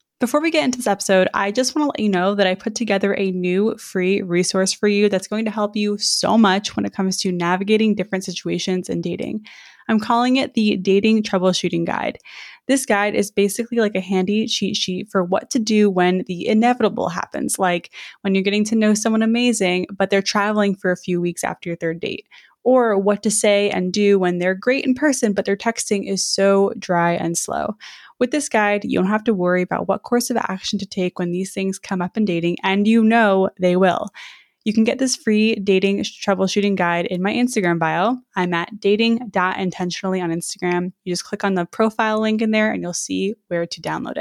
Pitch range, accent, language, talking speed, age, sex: 180-220 Hz, American, English, 215 wpm, 20-39, female